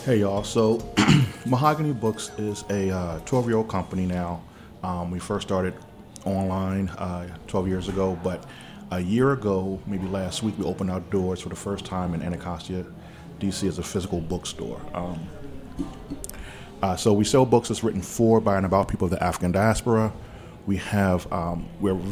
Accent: American